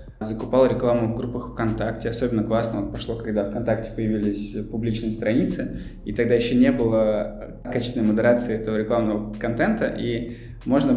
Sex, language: male, Russian